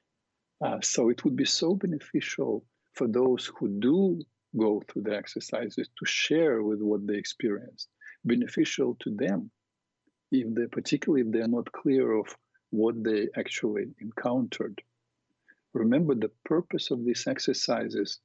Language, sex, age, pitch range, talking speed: English, male, 50-69, 110-175 Hz, 140 wpm